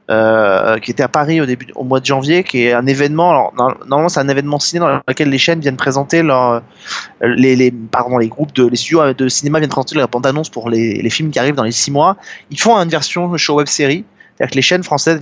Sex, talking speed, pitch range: male, 250 wpm, 125-160 Hz